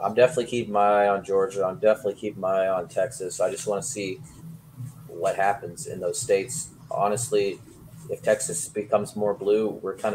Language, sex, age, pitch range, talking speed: English, male, 30-49, 105-160 Hz, 190 wpm